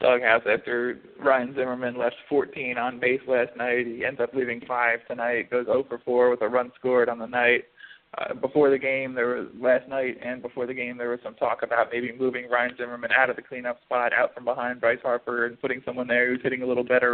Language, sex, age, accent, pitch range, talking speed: English, male, 20-39, American, 120-130 Hz, 235 wpm